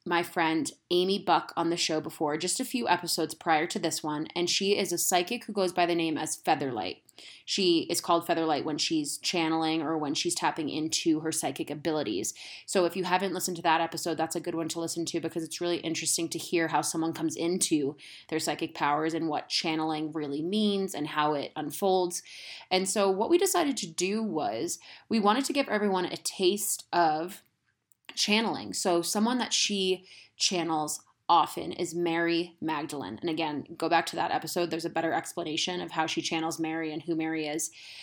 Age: 20-39